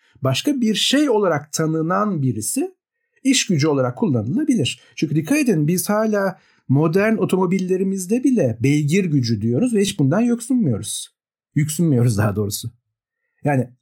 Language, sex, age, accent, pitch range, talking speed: Turkish, male, 50-69, native, 135-215 Hz, 125 wpm